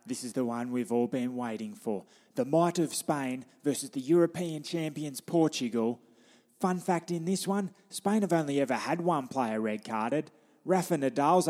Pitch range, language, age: 130-165 Hz, English, 20-39